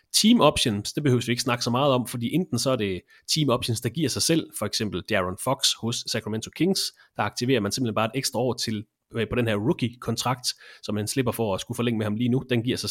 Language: English